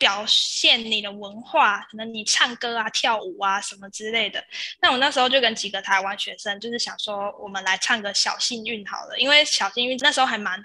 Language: Chinese